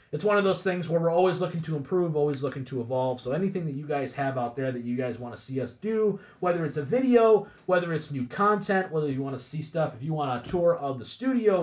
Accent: American